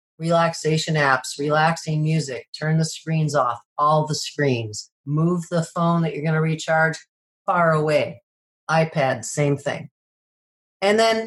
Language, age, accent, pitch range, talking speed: English, 40-59, American, 145-185 Hz, 140 wpm